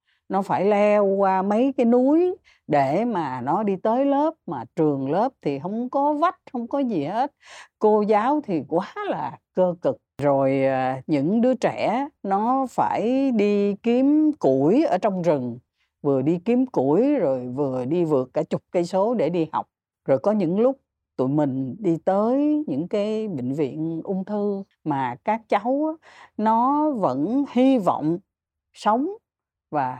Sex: female